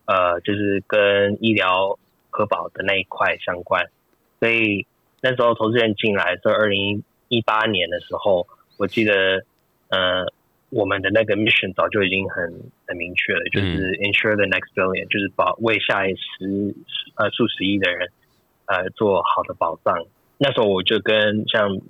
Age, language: 20-39, Chinese